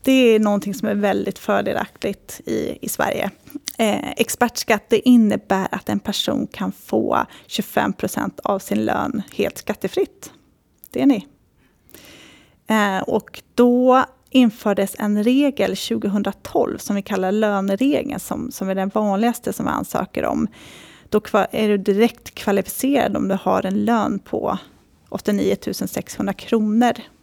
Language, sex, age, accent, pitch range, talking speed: Swedish, female, 30-49, native, 195-235 Hz, 135 wpm